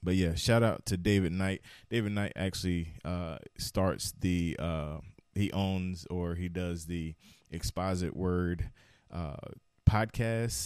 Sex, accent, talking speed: male, American, 135 wpm